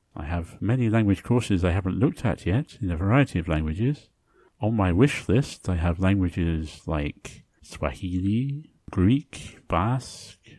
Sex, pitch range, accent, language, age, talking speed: male, 85-120 Hz, British, English, 50-69, 145 wpm